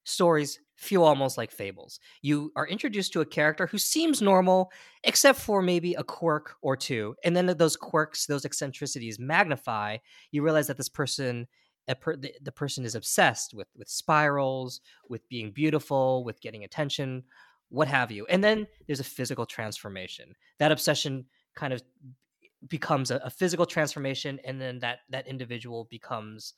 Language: English